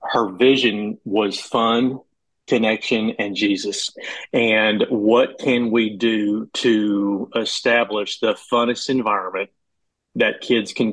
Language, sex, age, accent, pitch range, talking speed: English, male, 40-59, American, 100-115 Hz, 110 wpm